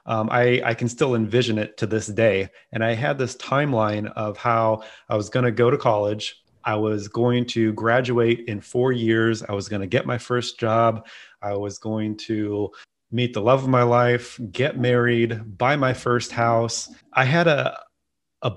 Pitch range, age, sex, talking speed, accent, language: 110-130 Hz, 30-49, male, 195 wpm, American, English